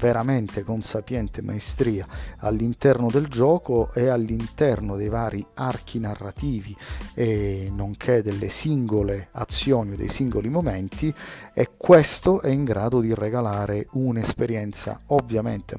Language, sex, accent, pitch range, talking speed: Italian, male, native, 105-135 Hz, 115 wpm